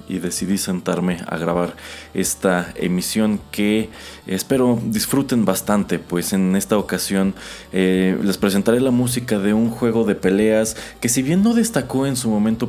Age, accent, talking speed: 30-49, Mexican, 155 wpm